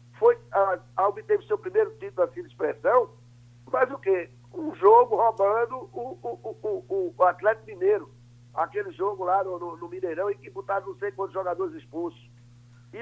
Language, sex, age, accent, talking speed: Portuguese, male, 60-79, Brazilian, 185 wpm